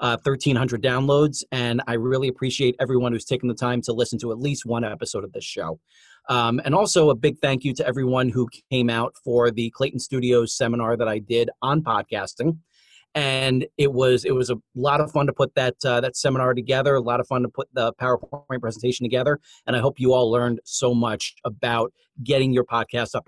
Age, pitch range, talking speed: 30-49, 120-135 Hz, 215 wpm